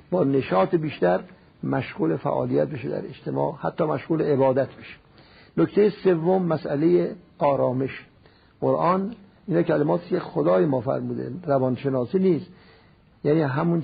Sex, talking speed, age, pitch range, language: male, 110 wpm, 50-69, 135-170 Hz, Persian